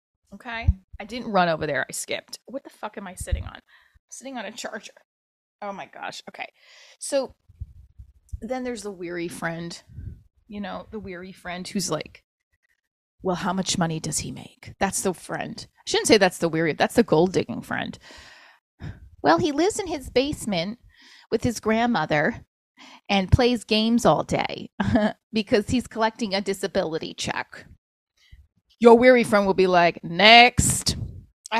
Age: 20-39